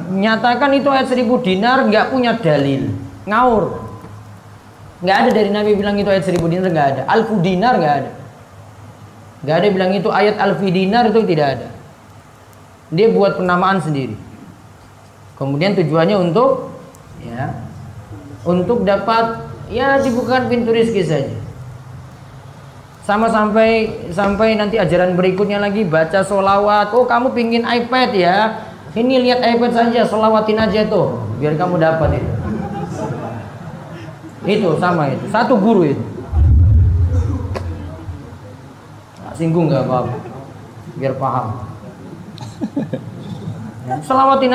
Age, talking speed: 30-49, 120 wpm